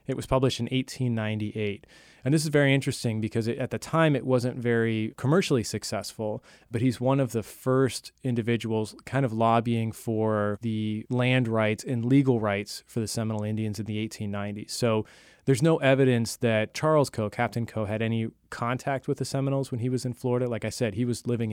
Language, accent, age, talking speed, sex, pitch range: English, American, 30-49, 190 wpm, male, 110-125 Hz